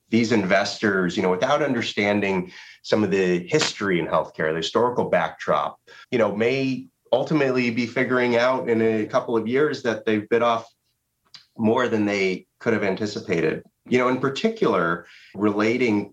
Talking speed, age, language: 155 wpm, 30-49, English